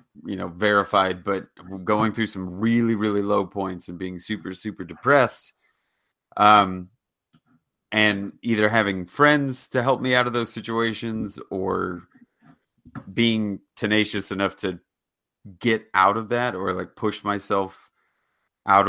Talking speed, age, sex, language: 135 wpm, 30-49, male, English